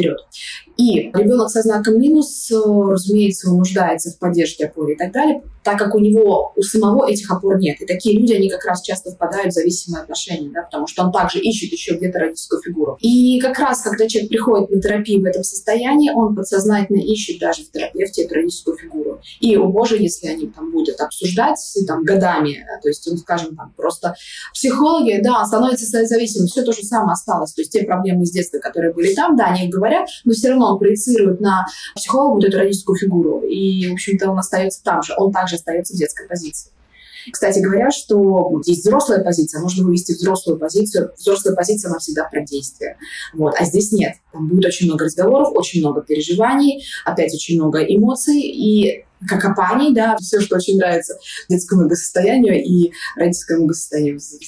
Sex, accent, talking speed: female, native, 190 wpm